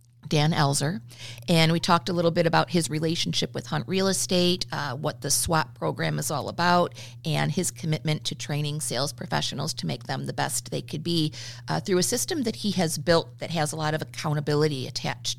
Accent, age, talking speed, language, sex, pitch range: American, 40-59, 205 wpm, English, female, 125-170 Hz